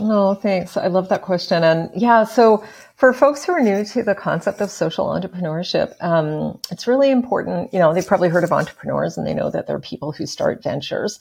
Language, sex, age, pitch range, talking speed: English, female, 40-59, 155-200 Hz, 215 wpm